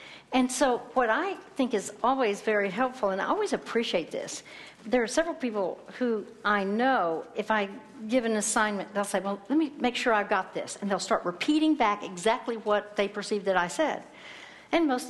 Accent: American